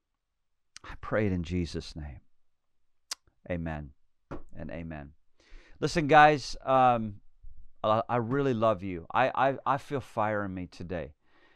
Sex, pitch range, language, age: male, 95-125 Hz, English, 40-59